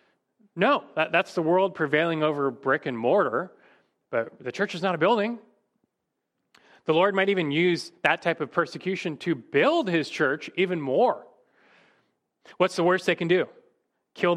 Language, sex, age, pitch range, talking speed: English, male, 30-49, 140-190 Hz, 160 wpm